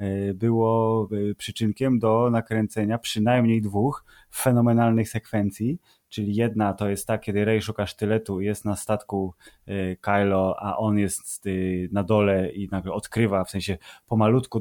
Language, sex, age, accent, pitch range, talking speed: Polish, male, 20-39, native, 100-115 Hz, 135 wpm